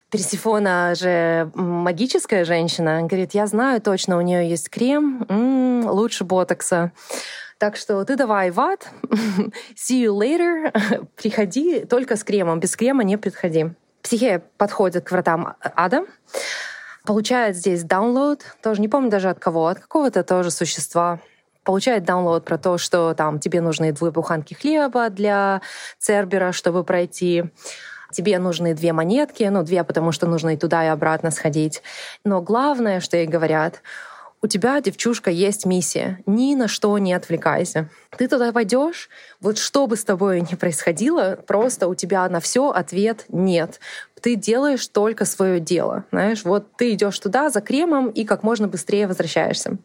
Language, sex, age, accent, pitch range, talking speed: Russian, female, 20-39, native, 175-230 Hz, 155 wpm